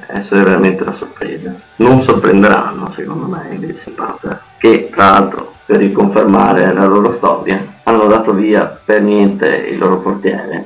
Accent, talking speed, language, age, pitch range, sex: native, 145 wpm, Italian, 20-39, 95-105 Hz, male